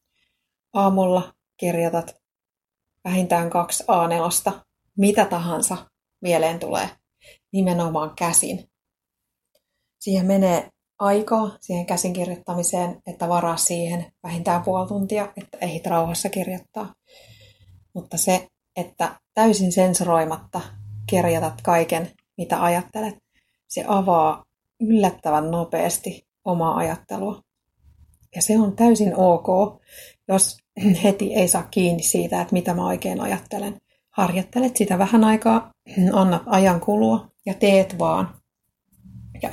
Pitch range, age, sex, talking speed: 170-200 Hz, 30-49, female, 105 wpm